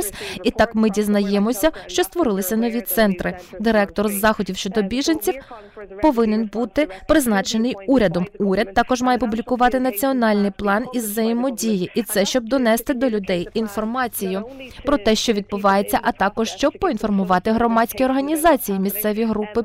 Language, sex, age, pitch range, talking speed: Ukrainian, female, 20-39, 205-245 Hz, 130 wpm